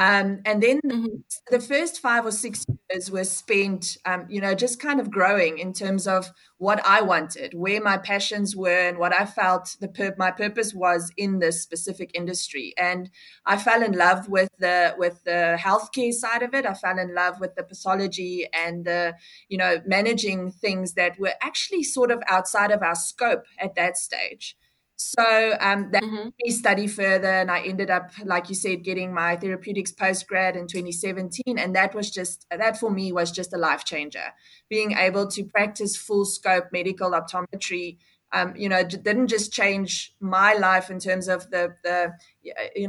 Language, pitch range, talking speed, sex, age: English, 180-210 Hz, 185 wpm, female, 20-39